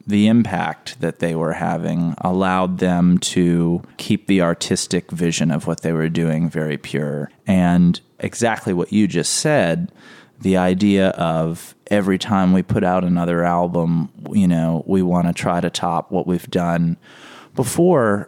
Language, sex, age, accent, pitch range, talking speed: English, male, 30-49, American, 85-105 Hz, 160 wpm